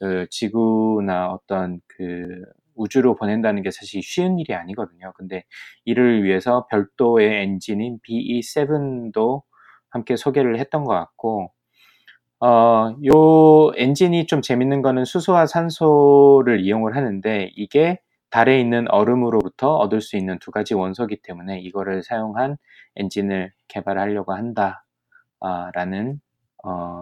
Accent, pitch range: native, 95-130 Hz